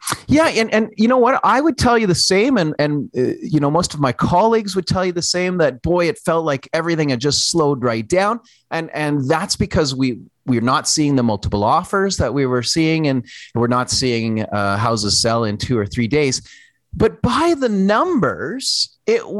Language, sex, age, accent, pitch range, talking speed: English, male, 30-49, American, 125-180 Hz, 215 wpm